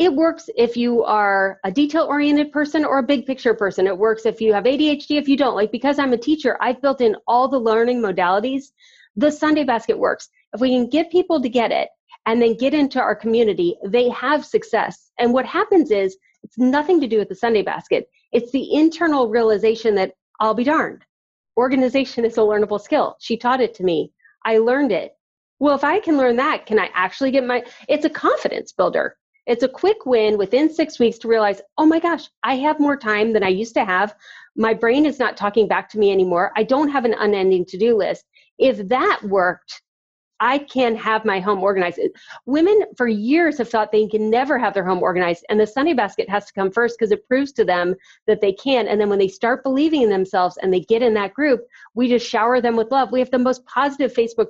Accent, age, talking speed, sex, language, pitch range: American, 30-49, 225 wpm, female, English, 210-285 Hz